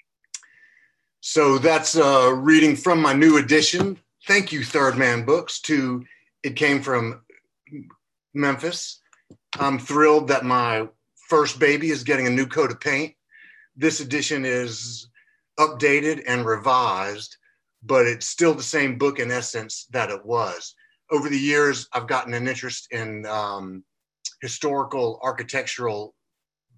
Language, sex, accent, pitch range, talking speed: English, male, American, 120-155 Hz, 130 wpm